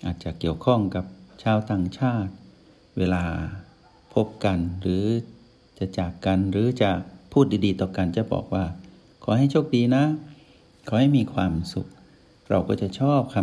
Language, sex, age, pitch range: Thai, male, 60-79, 95-115 Hz